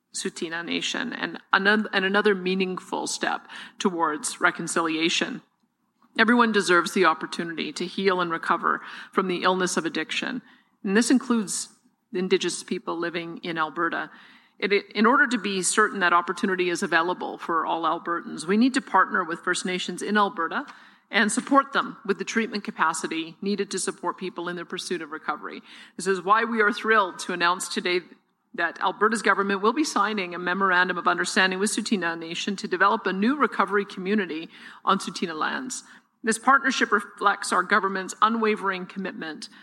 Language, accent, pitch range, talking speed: English, American, 180-220 Hz, 155 wpm